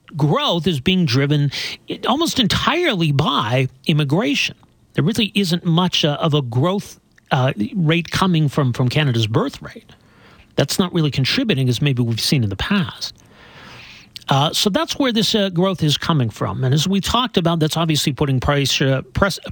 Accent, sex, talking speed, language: American, male, 165 wpm, English